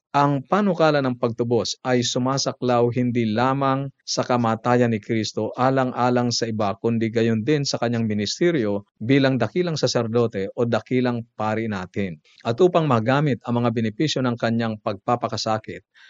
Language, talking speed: Filipino, 140 wpm